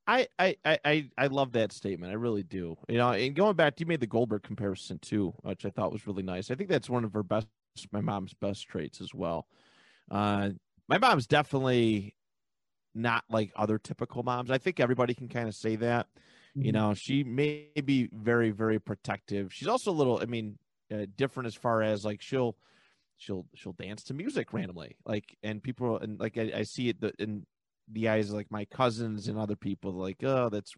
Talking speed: 210 wpm